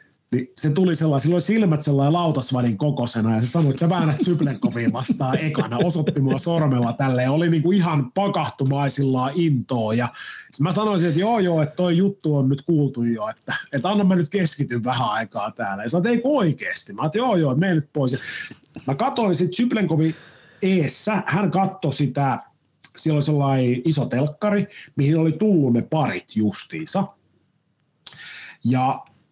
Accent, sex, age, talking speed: native, male, 30-49, 150 wpm